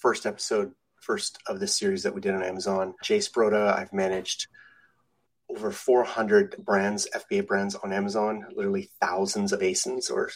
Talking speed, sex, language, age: 155 wpm, male, English, 30-49